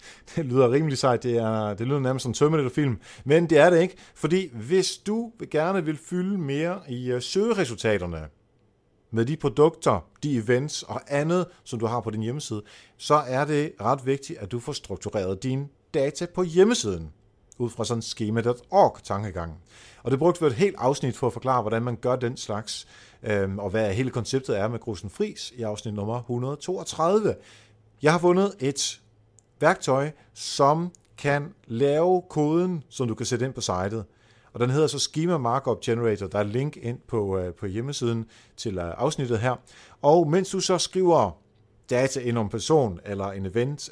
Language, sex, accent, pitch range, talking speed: Danish, male, native, 110-150 Hz, 175 wpm